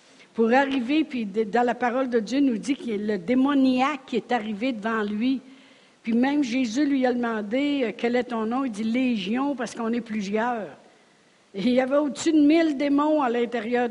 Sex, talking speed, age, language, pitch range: female, 210 wpm, 60-79, French, 200-255 Hz